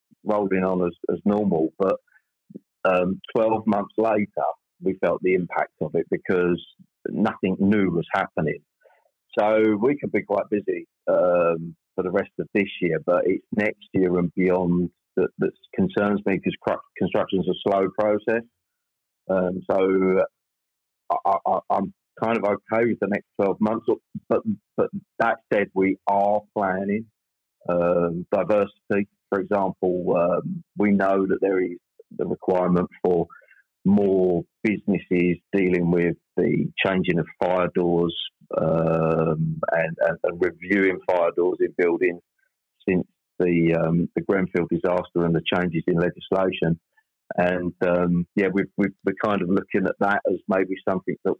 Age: 40-59